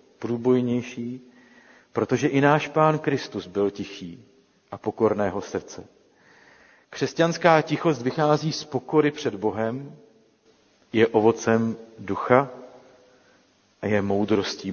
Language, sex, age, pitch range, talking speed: Czech, male, 50-69, 110-140 Hz, 100 wpm